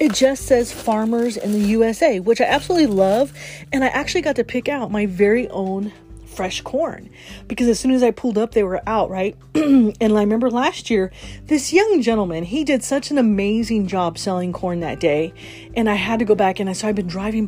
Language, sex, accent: English, female, American